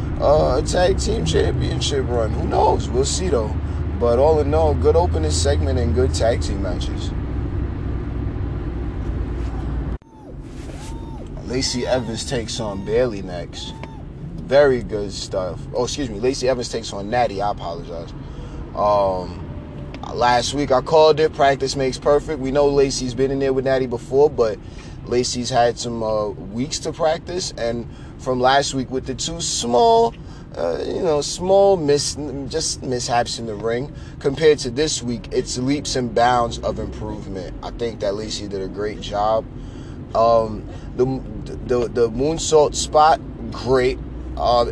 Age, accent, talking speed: 20-39, American, 150 wpm